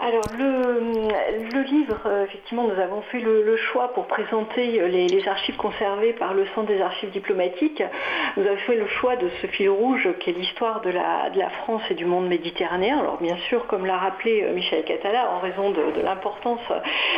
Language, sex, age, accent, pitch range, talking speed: French, female, 50-69, French, 185-255 Hz, 195 wpm